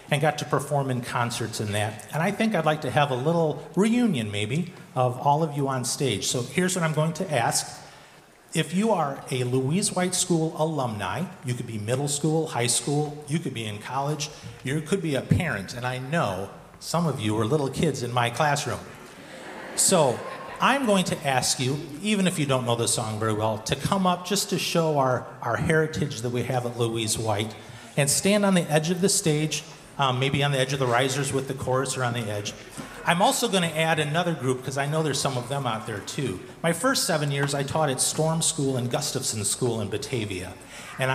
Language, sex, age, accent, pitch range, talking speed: English, male, 40-59, American, 120-160 Hz, 225 wpm